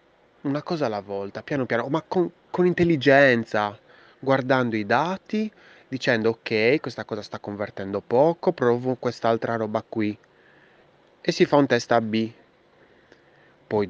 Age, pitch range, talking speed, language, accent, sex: 20-39, 105-150 Hz, 140 wpm, Italian, native, male